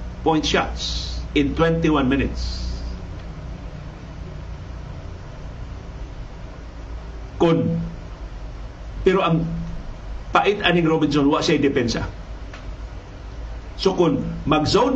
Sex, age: male, 50-69